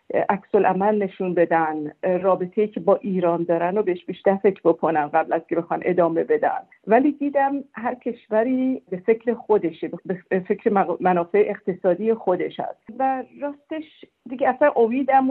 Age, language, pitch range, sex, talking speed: 50-69, Persian, 190-245 Hz, female, 150 wpm